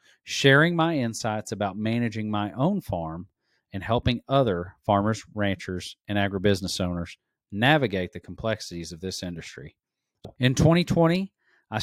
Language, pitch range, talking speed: English, 100-130 Hz, 125 wpm